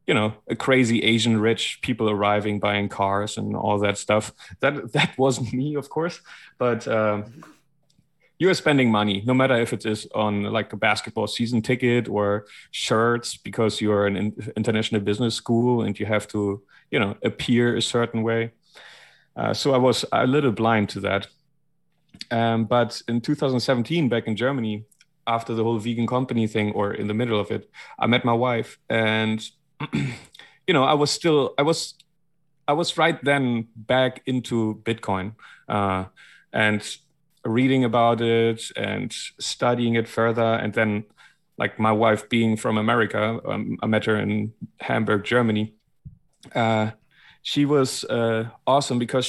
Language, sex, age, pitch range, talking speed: English, male, 30-49, 110-130 Hz, 160 wpm